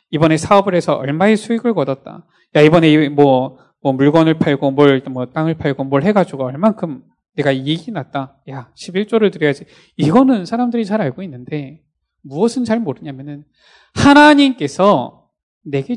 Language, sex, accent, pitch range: Korean, male, native, 145-240 Hz